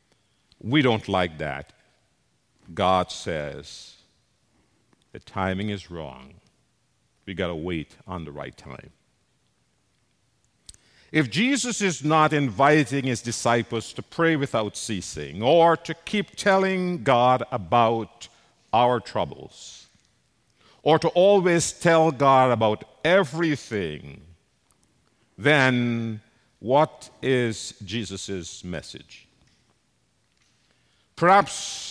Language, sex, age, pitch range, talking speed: English, male, 50-69, 100-155 Hz, 90 wpm